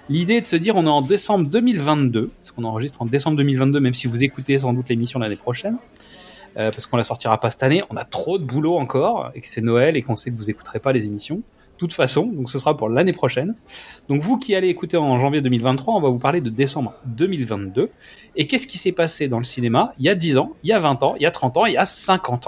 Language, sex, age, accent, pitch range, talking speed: French, male, 30-49, French, 130-205 Hz, 280 wpm